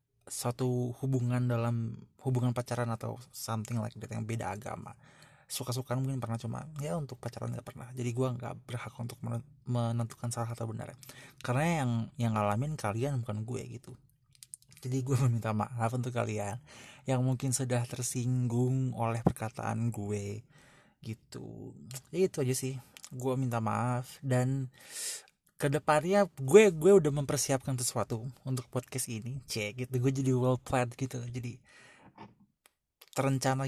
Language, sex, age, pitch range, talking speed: English, male, 20-39, 120-135 Hz, 135 wpm